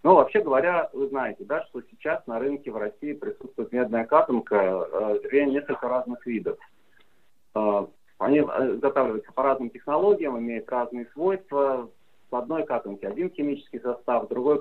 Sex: male